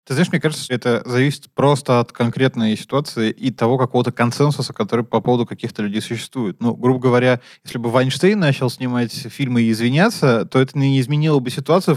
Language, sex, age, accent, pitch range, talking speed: Russian, male, 20-39, native, 120-150 Hz, 190 wpm